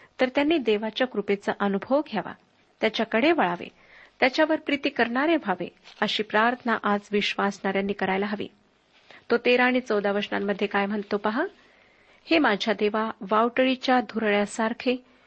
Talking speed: 125 wpm